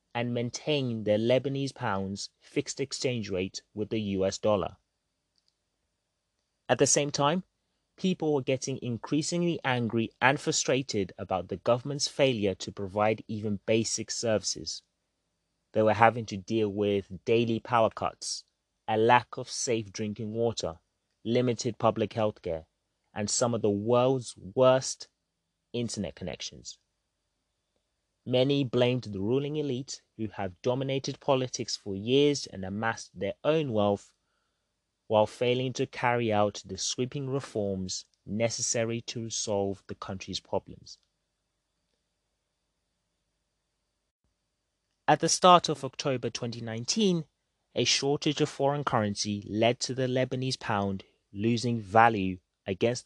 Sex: male